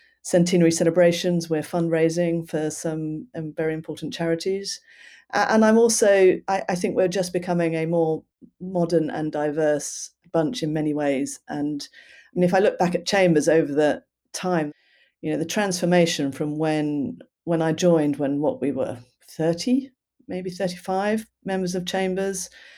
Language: English